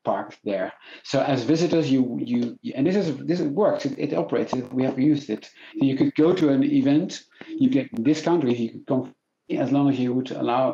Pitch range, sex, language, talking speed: 120-165 Hz, male, English, 210 wpm